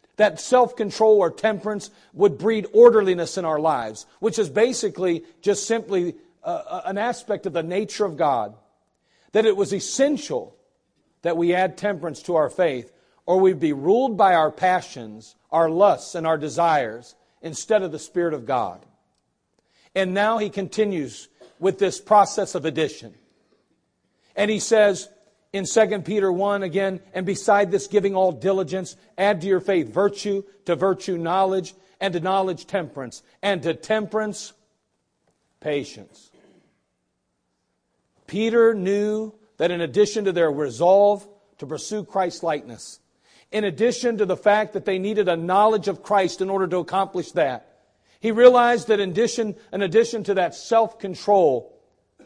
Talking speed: 150 wpm